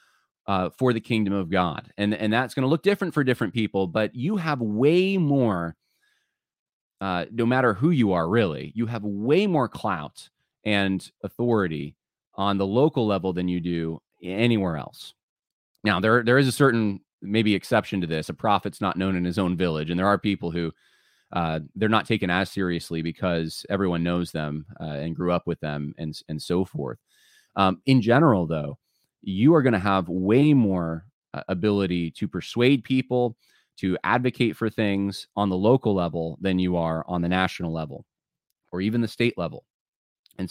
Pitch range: 90-120 Hz